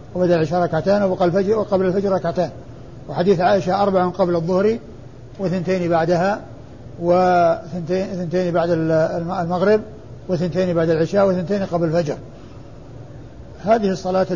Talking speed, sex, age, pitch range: 115 wpm, male, 60-79, 130-185 Hz